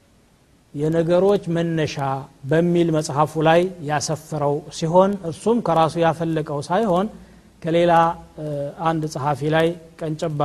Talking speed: 90 wpm